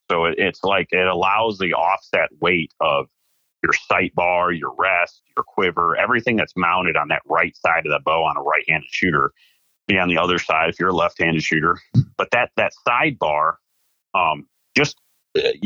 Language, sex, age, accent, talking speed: English, male, 40-59, American, 175 wpm